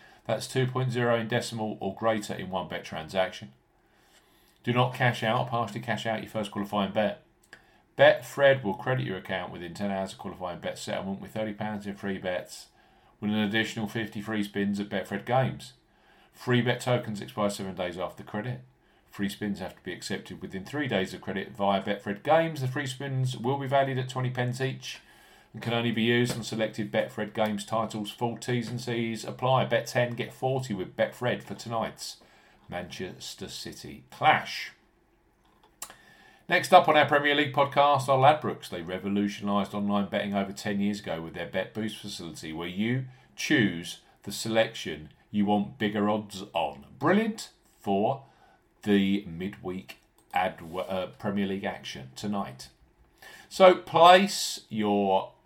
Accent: British